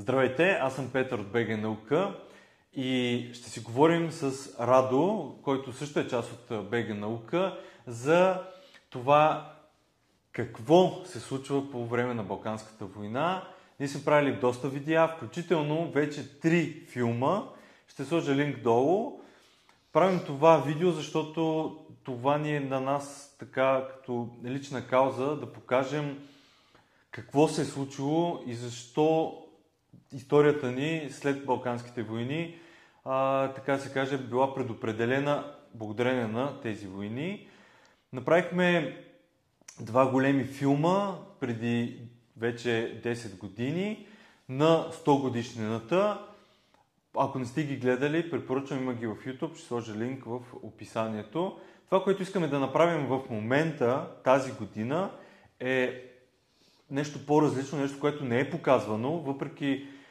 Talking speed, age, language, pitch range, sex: 125 wpm, 30-49, Bulgarian, 120-155 Hz, male